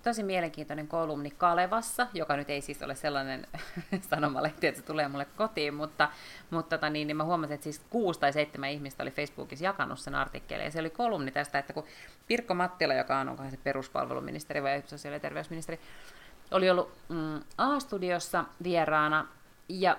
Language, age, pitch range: Finnish, 30-49, 145-180 Hz